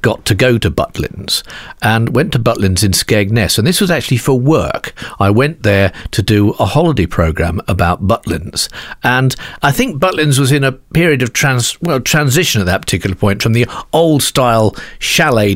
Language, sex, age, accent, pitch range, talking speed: English, male, 50-69, British, 100-140 Hz, 185 wpm